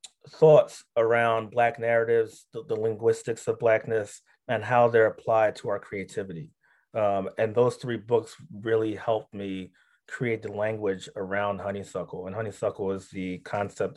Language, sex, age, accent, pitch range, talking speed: English, male, 30-49, American, 105-125 Hz, 145 wpm